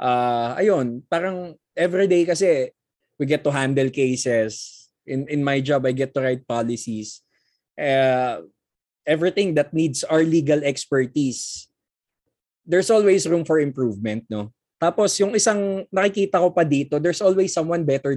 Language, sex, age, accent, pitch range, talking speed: Filipino, male, 20-39, native, 135-185 Hz, 145 wpm